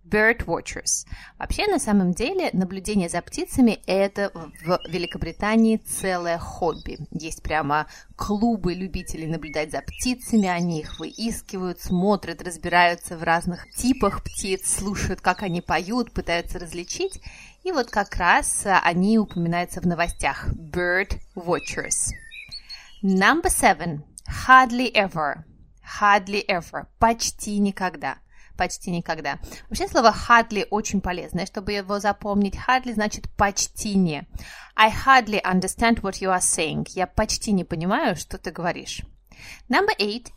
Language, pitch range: Russian, 175-230 Hz